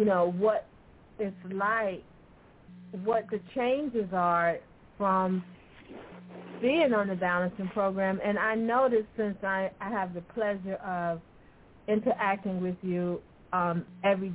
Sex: female